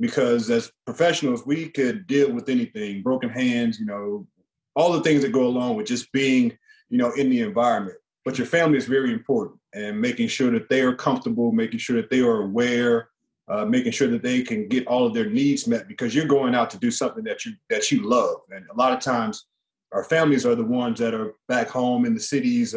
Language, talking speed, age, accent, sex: English, 225 wpm, 30-49, American, male